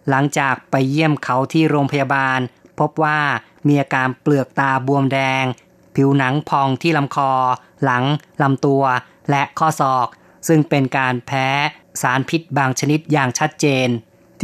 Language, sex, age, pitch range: Thai, female, 20-39, 135-155 Hz